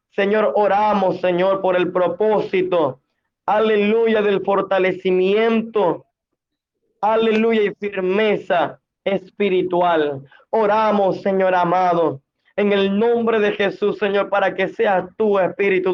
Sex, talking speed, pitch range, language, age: male, 100 wpm, 185-205 Hz, Spanish, 20-39